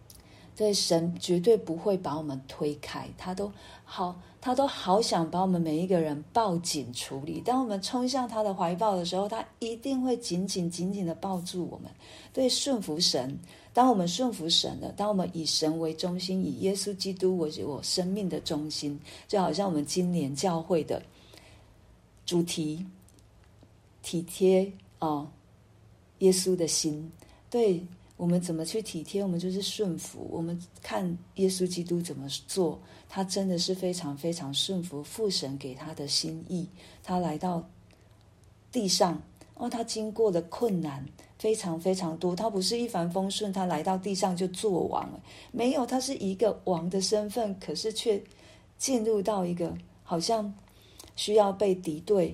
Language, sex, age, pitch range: Chinese, female, 40-59, 155-200 Hz